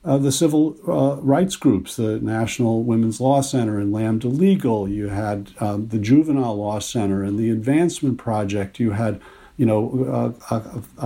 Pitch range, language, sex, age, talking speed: 110-140 Hz, English, male, 50-69, 170 wpm